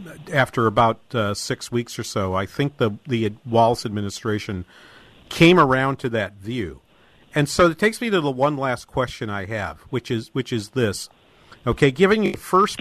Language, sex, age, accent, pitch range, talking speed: English, male, 50-69, American, 120-160 Hz, 185 wpm